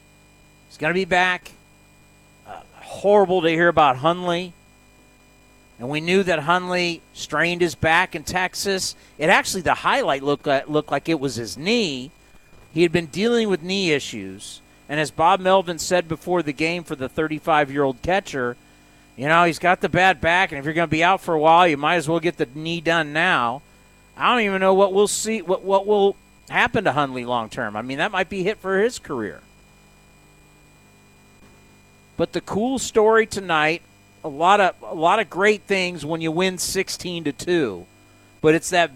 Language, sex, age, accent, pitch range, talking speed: English, male, 40-59, American, 140-180 Hz, 190 wpm